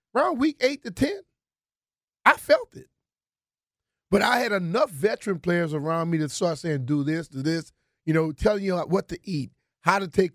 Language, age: English, 30-49